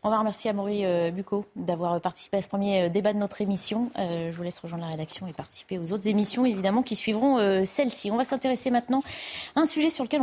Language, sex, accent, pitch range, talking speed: French, female, French, 185-245 Hz, 225 wpm